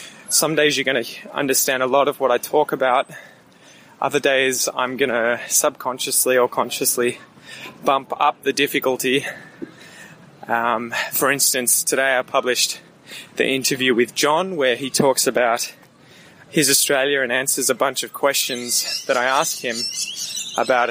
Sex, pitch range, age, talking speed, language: male, 130-160 Hz, 20-39, 150 wpm, English